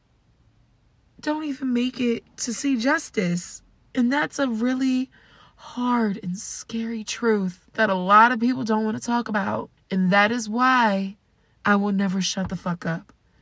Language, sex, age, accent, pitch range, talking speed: English, female, 20-39, American, 165-225 Hz, 160 wpm